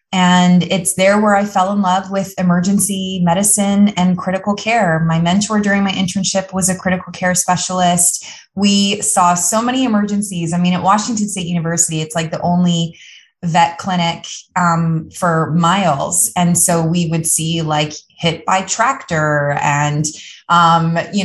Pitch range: 170-200 Hz